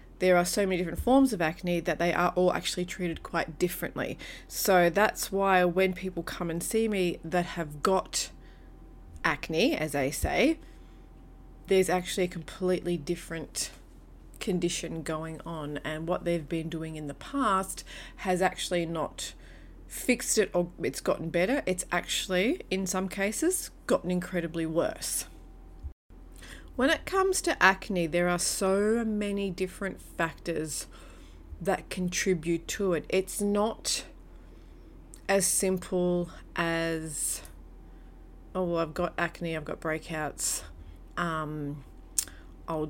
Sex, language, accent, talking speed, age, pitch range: female, English, Australian, 130 wpm, 30-49, 145-185 Hz